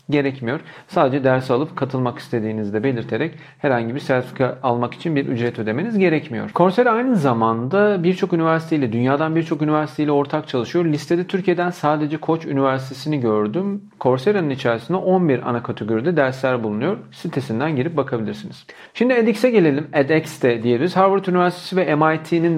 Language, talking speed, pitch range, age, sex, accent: Turkish, 135 wpm, 125-175 Hz, 40-59, male, native